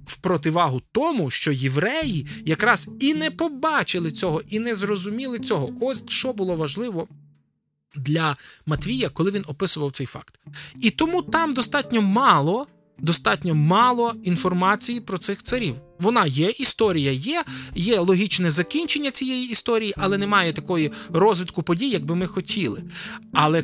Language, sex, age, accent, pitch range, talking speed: Ukrainian, male, 20-39, native, 150-215 Hz, 135 wpm